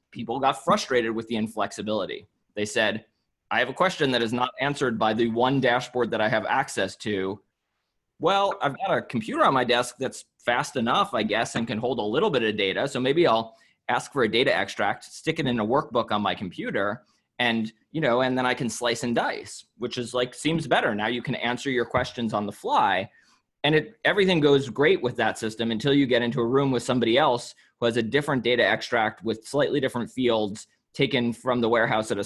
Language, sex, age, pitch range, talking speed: English, male, 20-39, 110-130 Hz, 220 wpm